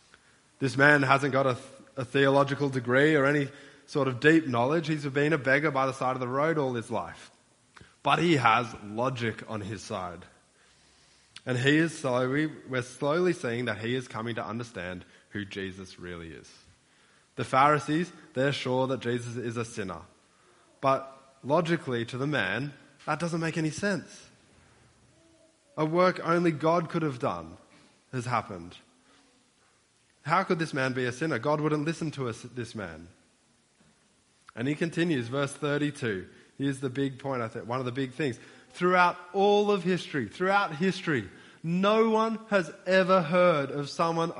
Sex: male